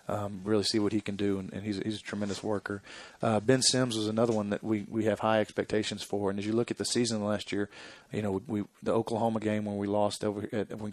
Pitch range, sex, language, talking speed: 100-110 Hz, male, English, 275 wpm